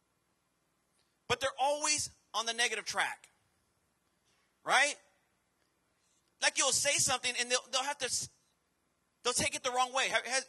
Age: 30-49